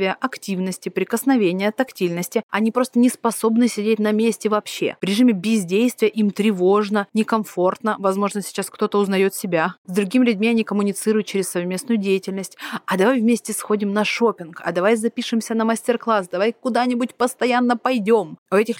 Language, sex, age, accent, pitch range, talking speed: Russian, female, 30-49, native, 185-230 Hz, 150 wpm